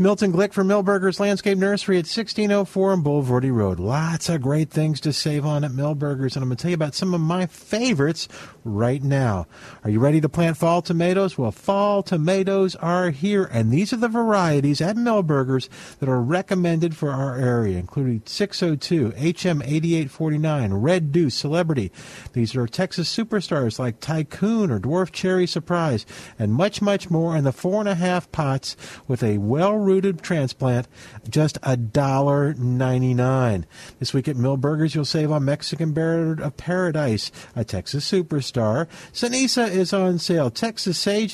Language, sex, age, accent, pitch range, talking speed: English, male, 50-69, American, 135-185 Hz, 170 wpm